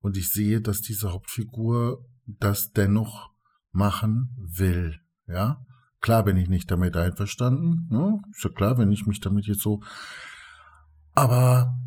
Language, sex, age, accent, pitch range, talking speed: German, male, 50-69, German, 105-130 Hz, 135 wpm